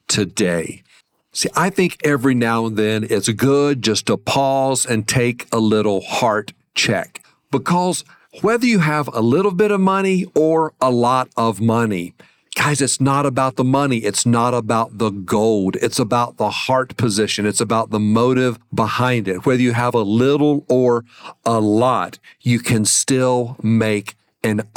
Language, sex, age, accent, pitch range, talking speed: English, male, 50-69, American, 110-135 Hz, 165 wpm